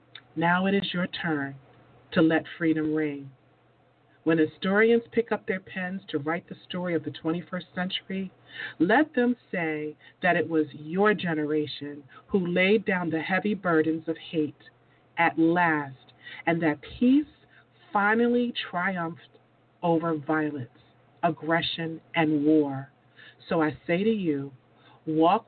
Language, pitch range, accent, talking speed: English, 150-180 Hz, American, 135 wpm